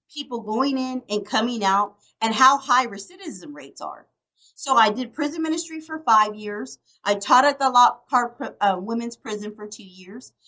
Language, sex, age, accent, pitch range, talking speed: English, female, 40-59, American, 215-305 Hz, 185 wpm